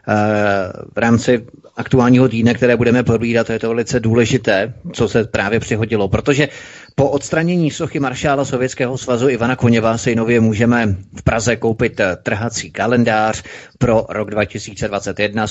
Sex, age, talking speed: male, 30-49, 130 wpm